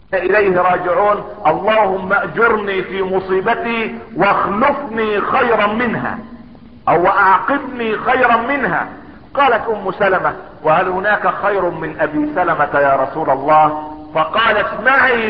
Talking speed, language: 105 wpm, Arabic